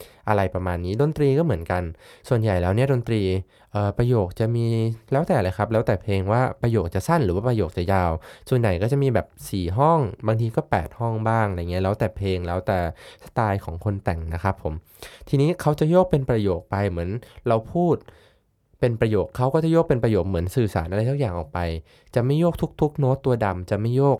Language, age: Thai, 20-39